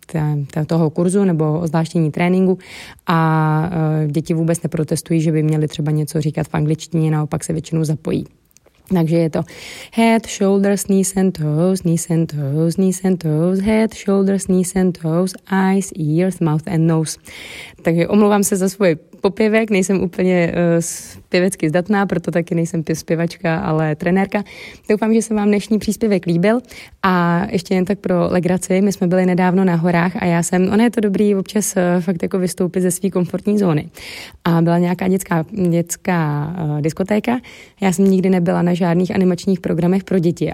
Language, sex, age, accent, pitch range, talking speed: Czech, female, 20-39, native, 165-190 Hz, 170 wpm